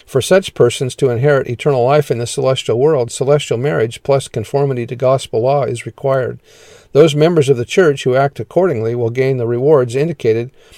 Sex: male